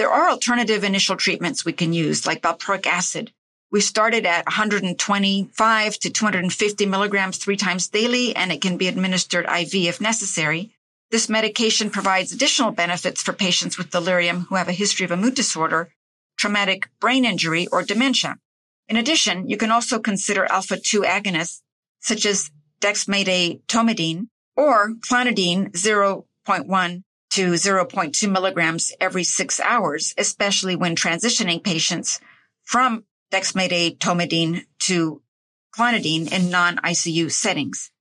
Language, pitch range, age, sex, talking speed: English, 175-210 Hz, 50-69, female, 135 wpm